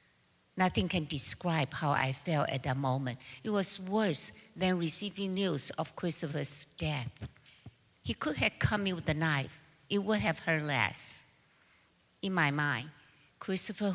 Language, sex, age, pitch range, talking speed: English, female, 60-79, 150-195 Hz, 150 wpm